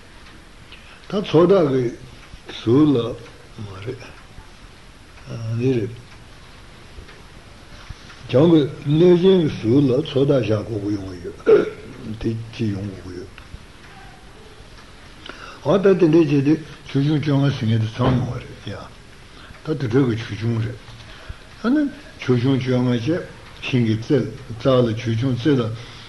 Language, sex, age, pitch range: Italian, male, 60-79, 115-140 Hz